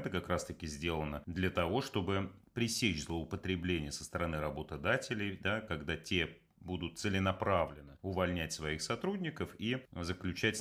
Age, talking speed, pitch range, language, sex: 30-49, 125 wpm, 80-105 Hz, Russian, male